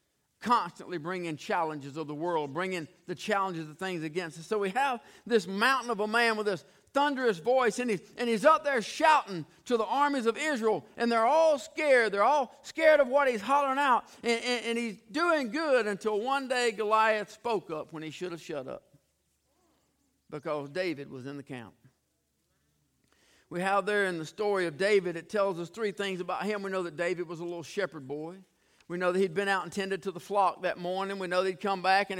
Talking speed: 215 wpm